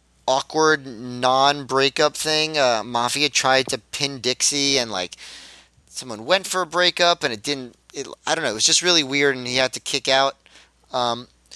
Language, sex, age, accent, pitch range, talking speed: English, male, 30-49, American, 120-155 Hz, 175 wpm